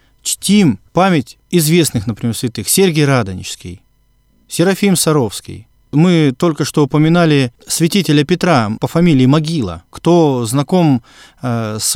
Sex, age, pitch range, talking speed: male, 20-39, 125-160 Hz, 105 wpm